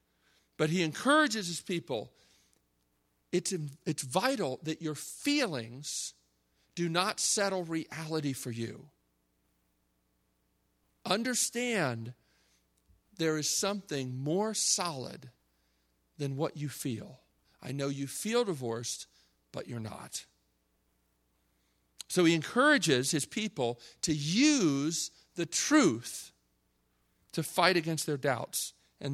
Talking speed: 105 wpm